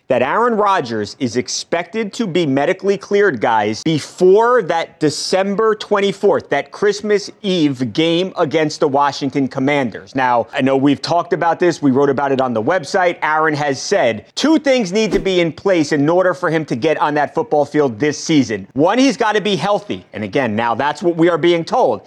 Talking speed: 195 wpm